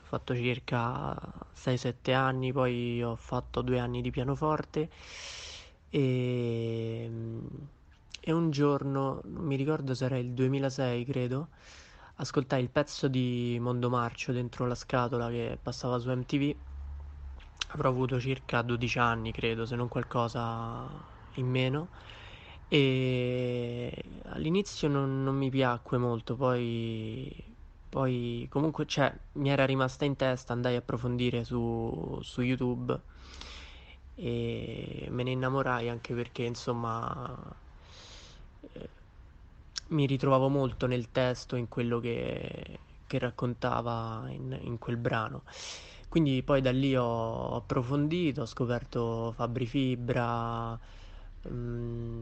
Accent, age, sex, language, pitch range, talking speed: native, 20-39, male, Italian, 115-130 Hz, 115 wpm